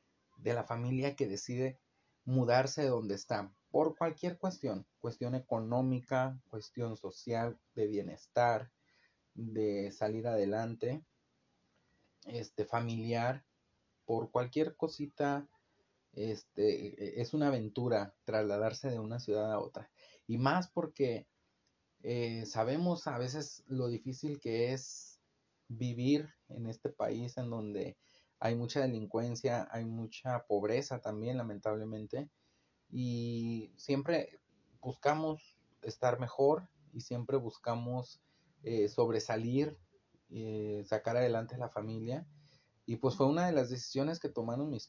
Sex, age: male, 30-49